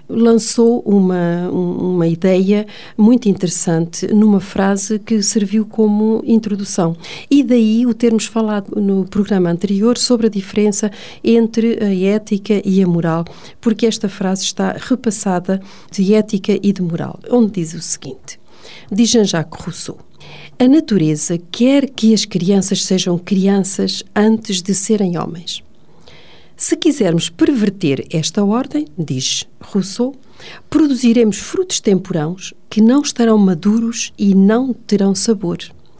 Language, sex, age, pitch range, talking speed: Portuguese, female, 50-69, 180-225 Hz, 125 wpm